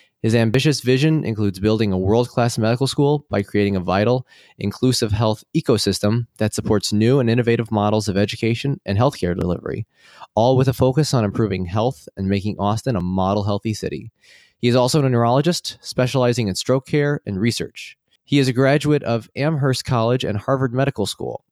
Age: 20-39